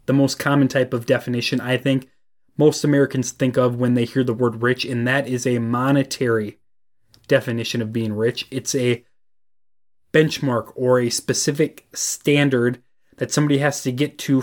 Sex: male